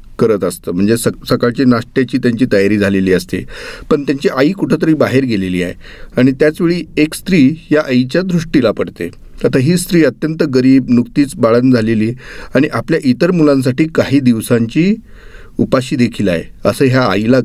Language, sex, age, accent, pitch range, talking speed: Marathi, male, 40-59, native, 110-150 Hz, 130 wpm